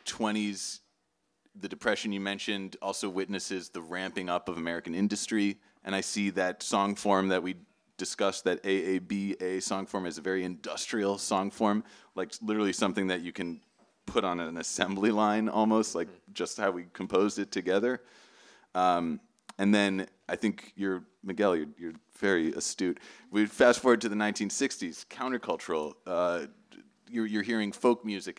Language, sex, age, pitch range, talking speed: English, male, 30-49, 90-105 Hz, 165 wpm